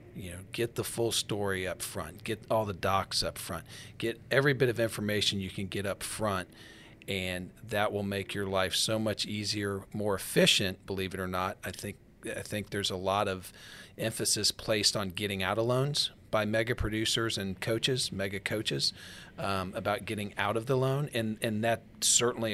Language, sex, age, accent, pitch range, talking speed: English, male, 40-59, American, 95-115 Hz, 190 wpm